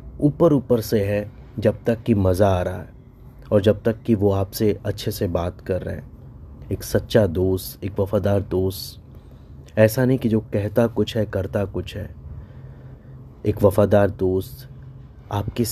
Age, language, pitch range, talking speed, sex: 20-39, Hindi, 95-115 Hz, 165 wpm, male